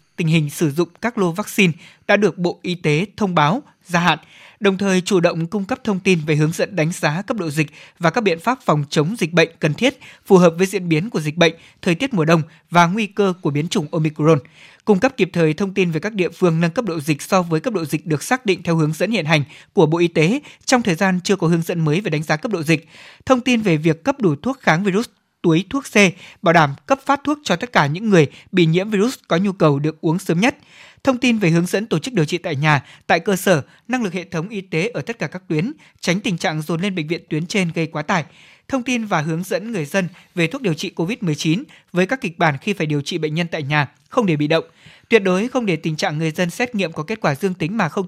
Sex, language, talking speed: male, Vietnamese, 275 wpm